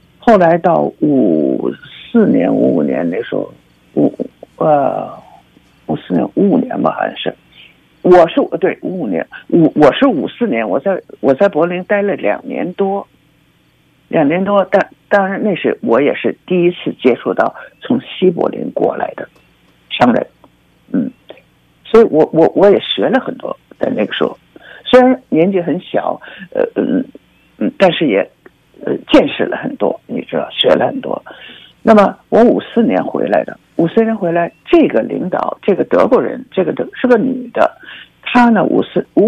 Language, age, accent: Chinese, 50-69, native